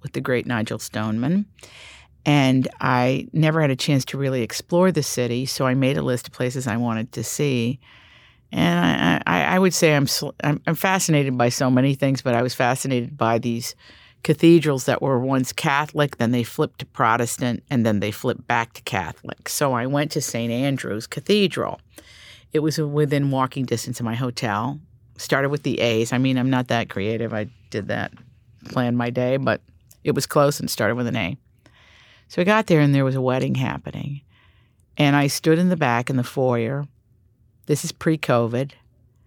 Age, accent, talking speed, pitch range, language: 50-69, American, 190 wpm, 115-150 Hz, English